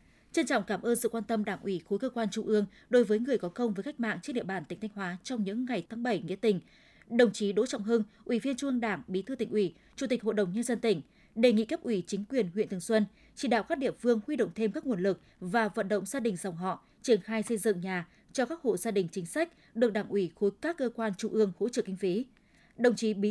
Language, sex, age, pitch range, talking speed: Vietnamese, female, 20-39, 200-245 Hz, 285 wpm